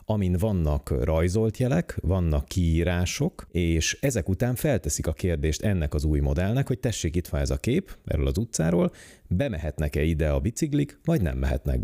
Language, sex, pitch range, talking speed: Hungarian, male, 75-105 Hz, 165 wpm